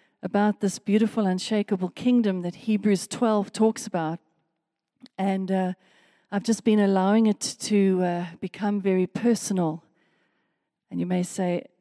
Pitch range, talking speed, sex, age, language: 180-225 Hz, 130 wpm, female, 40-59, English